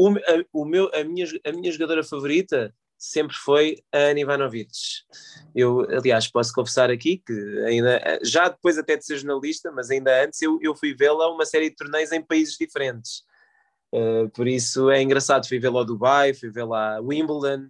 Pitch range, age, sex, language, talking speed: 130-160 Hz, 20-39, male, Portuguese, 185 wpm